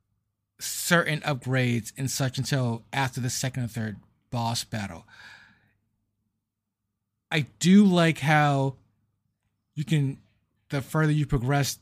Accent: American